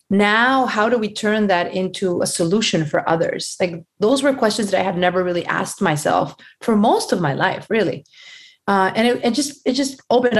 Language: English